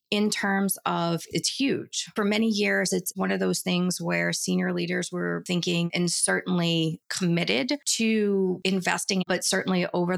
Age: 30-49